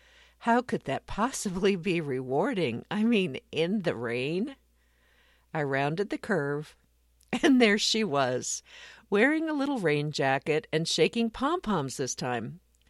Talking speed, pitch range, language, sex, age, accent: 135 wpm, 135-225 Hz, English, female, 50-69, American